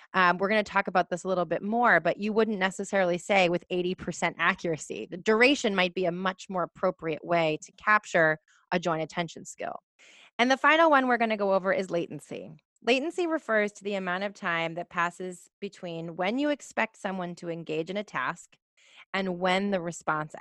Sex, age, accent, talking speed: female, 30-49, American, 195 wpm